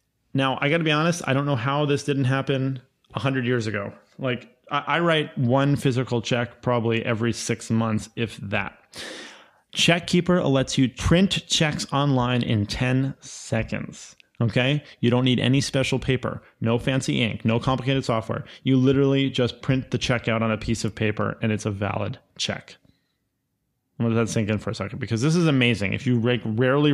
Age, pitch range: 30-49, 115-140 Hz